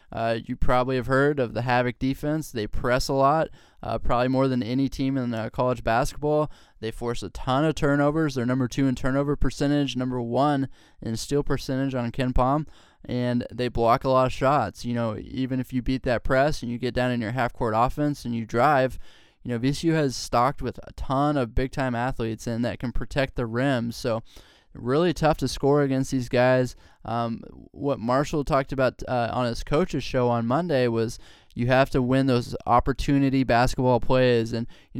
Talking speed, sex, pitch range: 205 wpm, male, 120-135 Hz